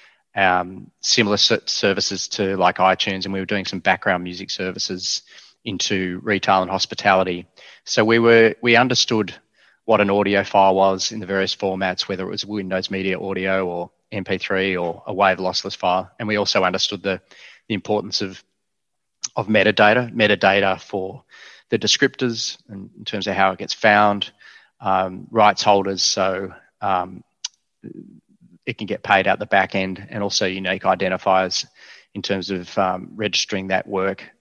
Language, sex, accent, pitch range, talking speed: English, male, Australian, 95-105 Hz, 160 wpm